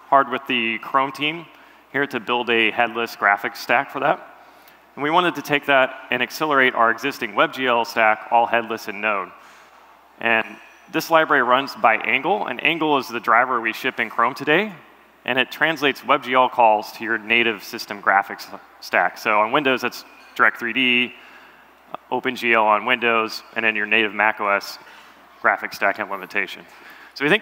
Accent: American